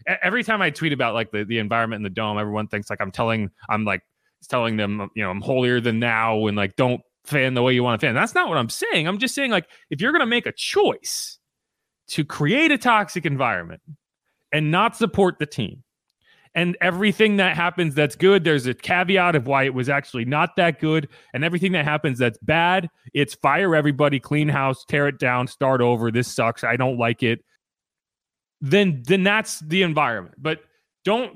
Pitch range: 120-180 Hz